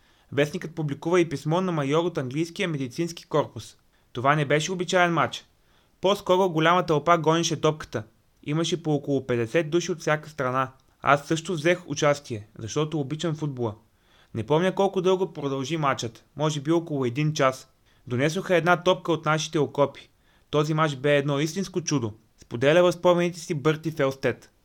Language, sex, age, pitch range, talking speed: Bulgarian, male, 30-49, 135-170 Hz, 155 wpm